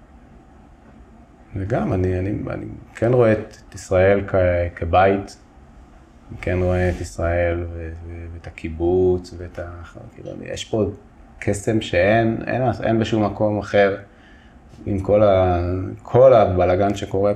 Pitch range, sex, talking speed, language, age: 85-100 Hz, male, 125 wpm, Hebrew, 20-39